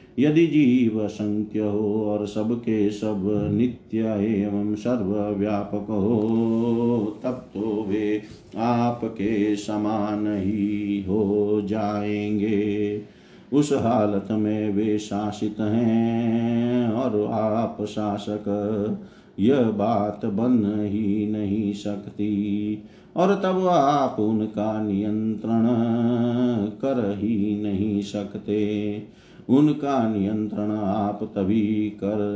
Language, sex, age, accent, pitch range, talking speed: Hindi, male, 50-69, native, 105-115 Hz, 95 wpm